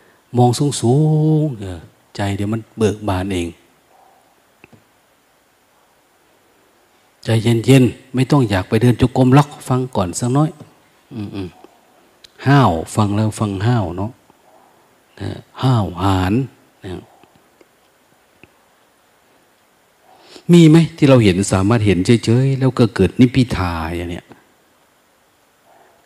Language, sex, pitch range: Thai, male, 100-140 Hz